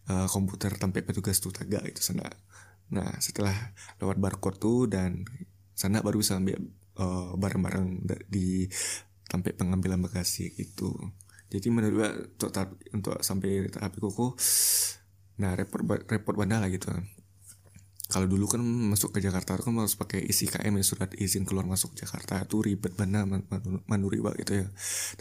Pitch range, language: 95-105 Hz, Indonesian